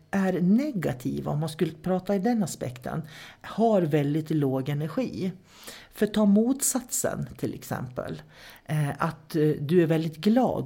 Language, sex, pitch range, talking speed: English, male, 145-190 Hz, 130 wpm